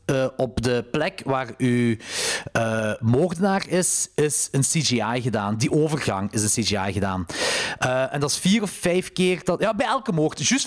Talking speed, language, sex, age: 185 wpm, Dutch, male, 40-59